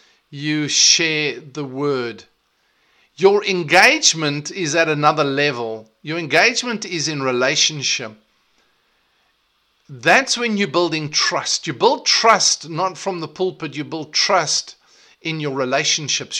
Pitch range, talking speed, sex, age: 150-195 Hz, 120 wpm, male, 50-69